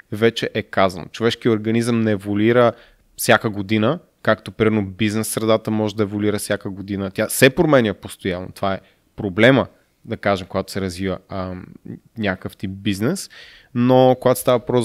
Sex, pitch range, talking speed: male, 100-120 Hz, 155 wpm